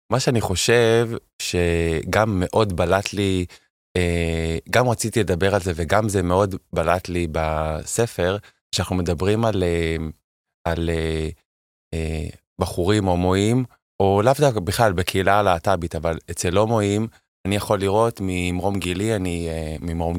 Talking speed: 125 wpm